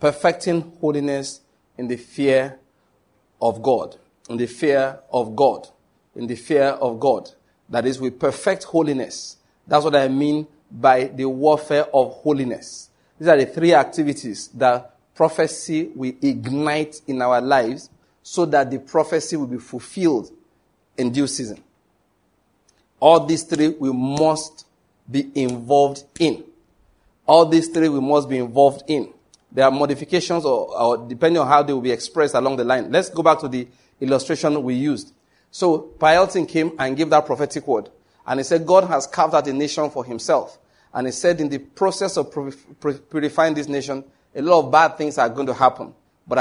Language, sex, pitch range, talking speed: English, male, 130-155 Hz, 170 wpm